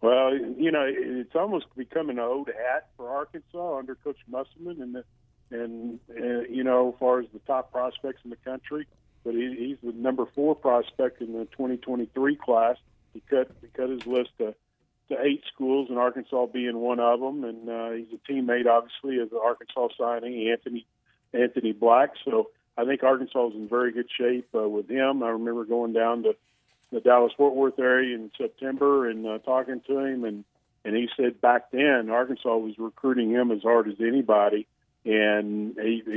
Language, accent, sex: English, American, male